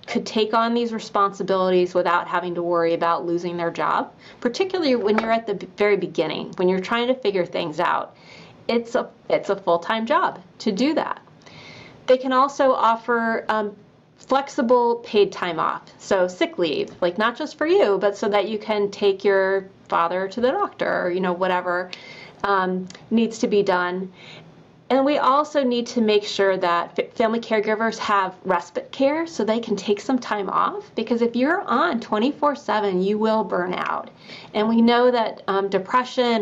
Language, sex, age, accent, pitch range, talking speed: English, female, 30-49, American, 190-235 Hz, 175 wpm